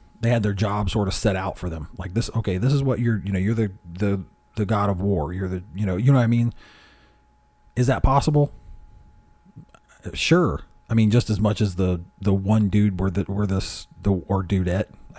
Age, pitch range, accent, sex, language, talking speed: 40-59, 95-115 Hz, American, male, English, 220 wpm